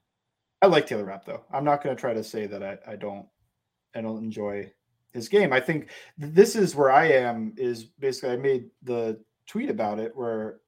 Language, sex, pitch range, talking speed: English, male, 115-145 Hz, 210 wpm